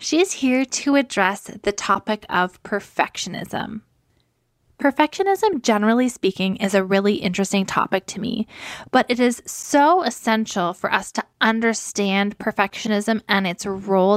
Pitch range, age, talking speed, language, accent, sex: 190-245 Hz, 10-29, 135 wpm, English, American, female